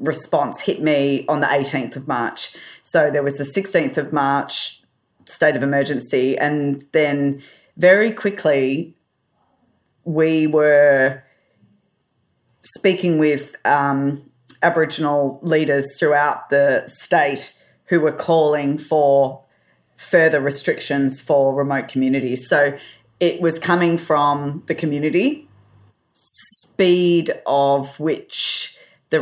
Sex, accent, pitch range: female, Australian, 135-155 Hz